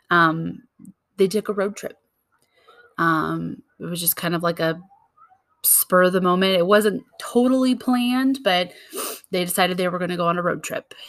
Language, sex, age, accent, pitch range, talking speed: English, female, 20-39, American, 170-200 Hz, 185 wpm